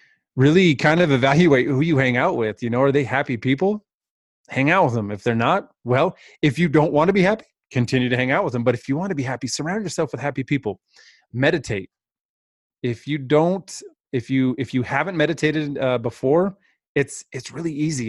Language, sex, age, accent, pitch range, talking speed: English, male, 30-49, American, 110-140 Hz, 210 wpm